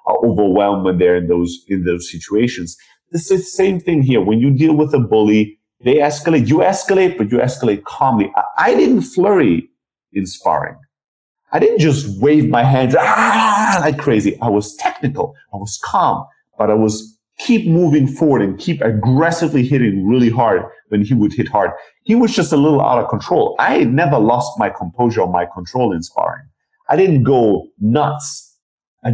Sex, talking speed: male, 185 wpm